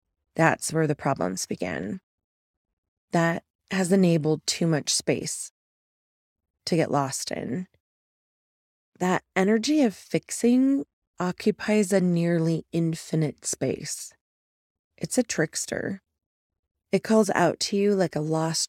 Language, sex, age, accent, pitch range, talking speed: English, female, 30-49, American, 130-185 Hz, 110 wpm